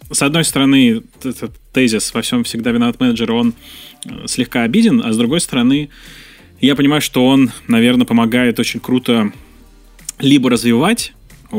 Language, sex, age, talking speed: Russian, male, 20-39, 140 wpm